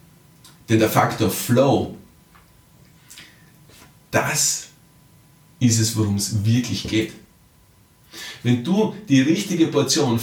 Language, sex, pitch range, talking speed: German, male, 115-160 Hz, 95 wpm